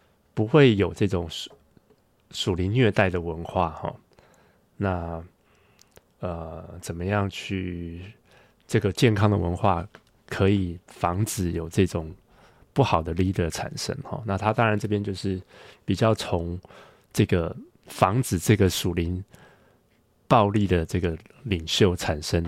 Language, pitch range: Chinese, 90-110 Hz